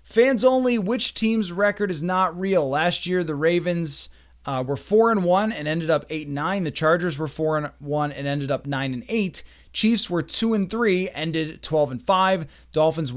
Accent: American